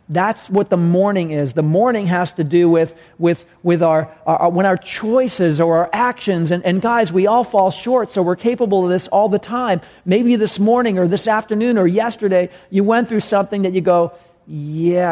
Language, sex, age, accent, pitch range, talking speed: English, male, 40-59, American, 160-205 Hz, 205 wpm